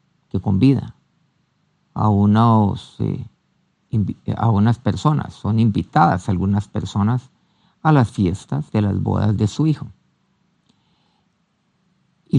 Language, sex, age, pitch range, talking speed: Spanish, male, 50-69, 105-160 Hz, 110 wpm